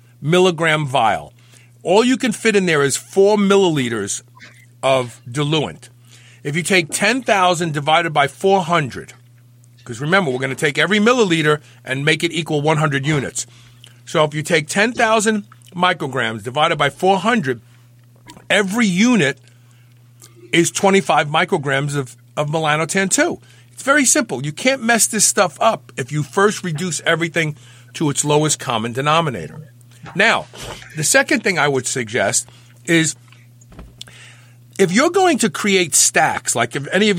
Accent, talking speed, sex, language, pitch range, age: American, 145 wpm, male, English, 120-190 Hz, 50-69